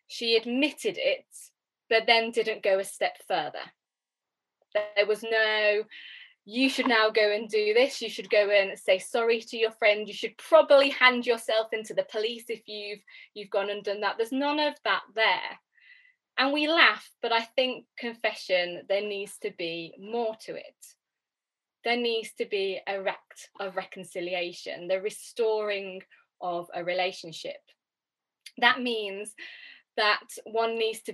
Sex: female